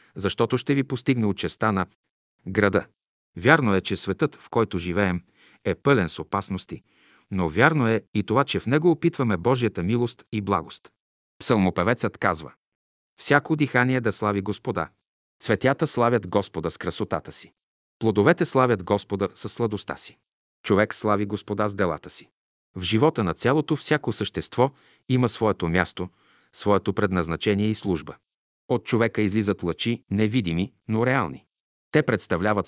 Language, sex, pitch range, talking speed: Bulgarian, male, 90-120 Hz, 145 wpm